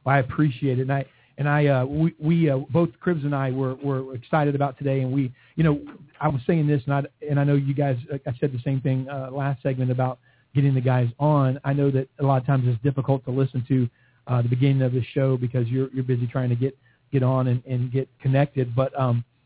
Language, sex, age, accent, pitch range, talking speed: English, male, 40-59, American, 125-145 Hz, 255 wpm